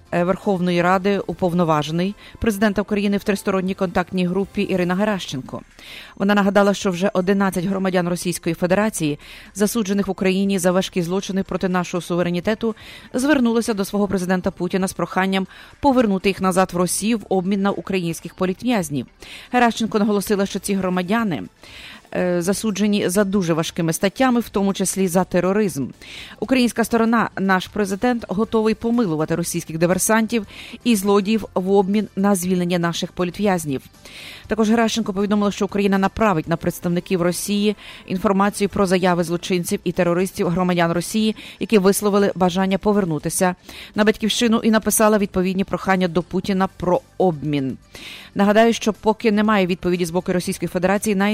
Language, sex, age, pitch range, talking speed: English, female, 30-49, 180-210 Hz, 135 wpm